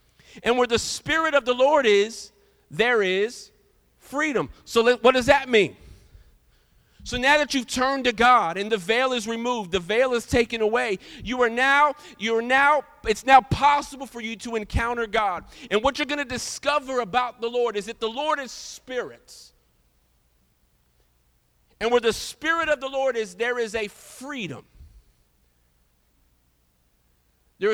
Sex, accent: male, American